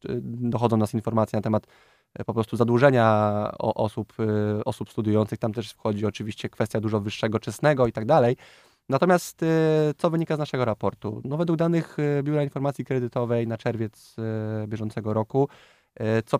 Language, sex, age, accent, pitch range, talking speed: Polish, male, 20-39, native, 105-125 Hz, 145 wpm